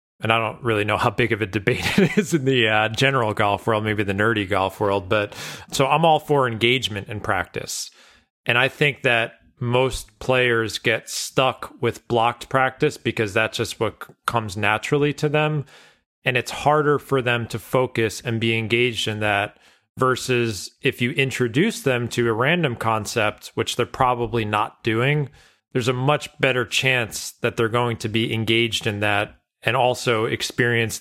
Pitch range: 105-130 Hz